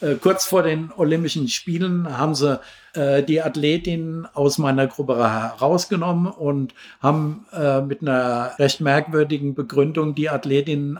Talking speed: 130 wpm